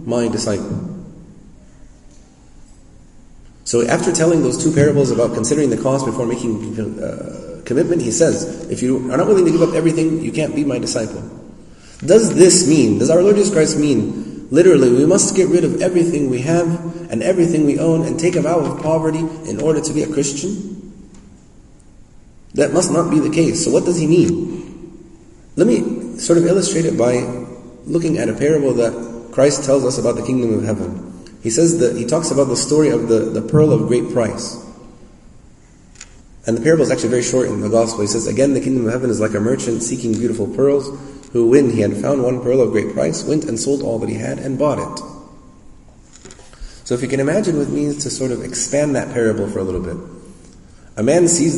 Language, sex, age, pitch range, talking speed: English, male, 30-49, 115-160 Hz, 205 wpm